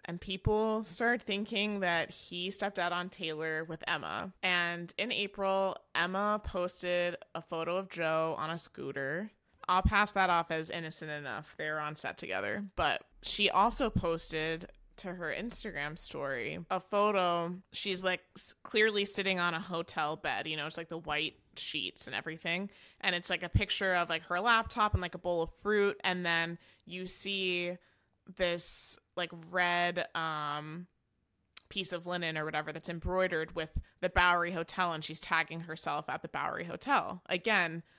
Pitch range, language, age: 165-195 Hz, English, 20-39